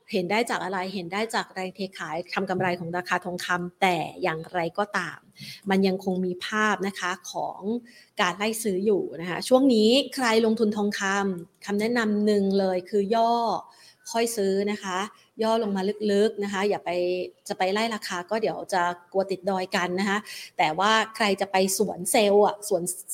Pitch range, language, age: 190-230 Hz, Thai, 30-49